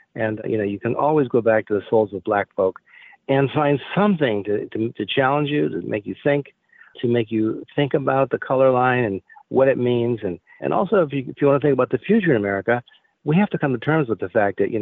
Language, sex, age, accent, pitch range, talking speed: English, male, 50-69, American, 110-140 Hz, 260 wpm